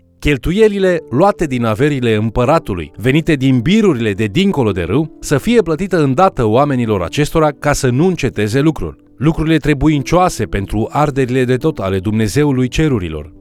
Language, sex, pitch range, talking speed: Romanian, male, 110-155 Hz, 145 wpm